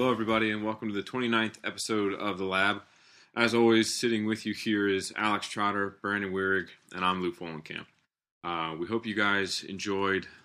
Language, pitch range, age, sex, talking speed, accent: English, 90-105 Hz, 20-39, male, 180 wpm, American